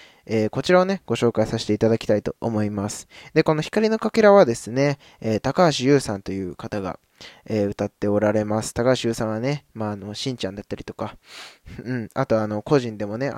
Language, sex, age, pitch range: Japanese, male, 20-39, 105-140 Hz